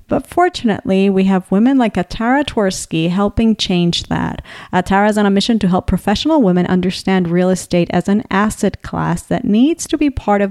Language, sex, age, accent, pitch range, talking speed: English, female, 40-59, American, 180-255 Hz, 190 wpm